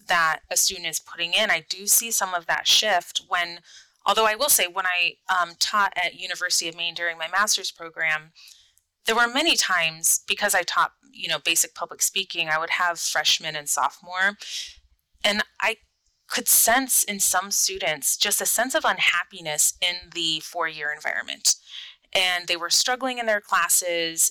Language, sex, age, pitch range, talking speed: English, female, 30-49, 165-200 Hz, 175 wpm